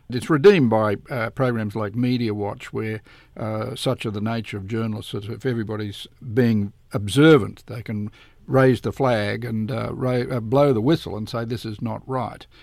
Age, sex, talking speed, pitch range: 50-69, male, 185 wpm, 110-130 Hz